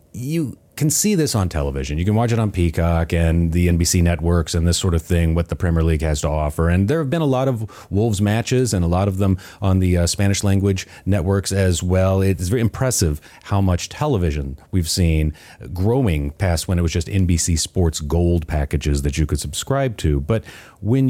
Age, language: 30-49, English